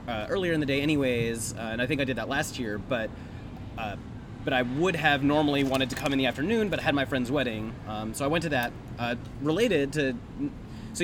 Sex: male